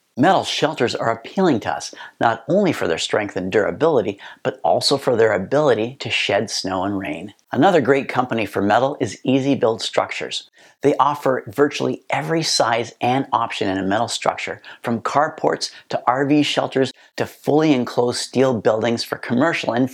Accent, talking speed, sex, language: American, 170 wpm, male, English